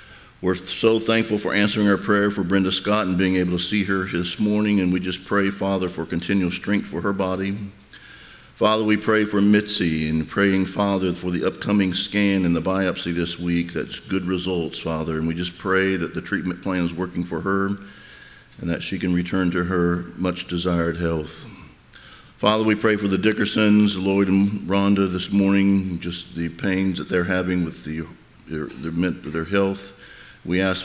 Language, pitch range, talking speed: English, 85-100 Hz, 185 wpm